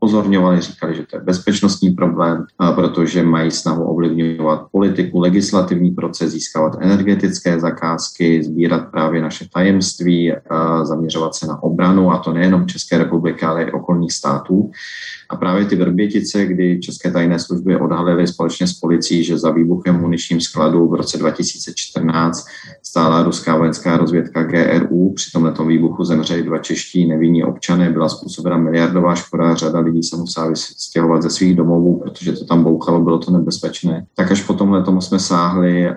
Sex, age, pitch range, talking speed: male, 30-49, 80-90 Hz, 155 wpm